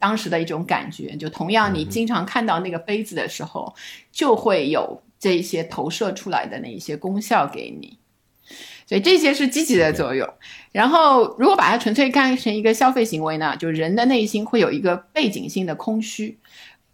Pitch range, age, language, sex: 175-240 Hz, 50-69, Chinese, female